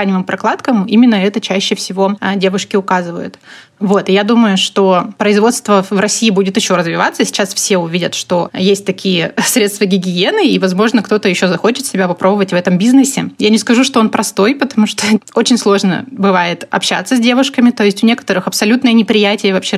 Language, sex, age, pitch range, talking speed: Russian, female, 20-39, 190-220 Hz, 170 wpm